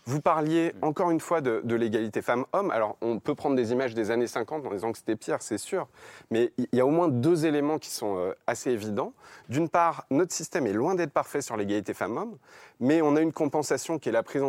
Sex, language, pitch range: male, French, 125-175 Hz